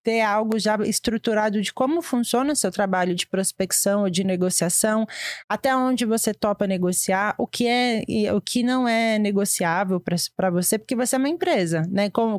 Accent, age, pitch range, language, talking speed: Brazilian, 20-39, 200-255 Hz, Portuguese, 185 wpm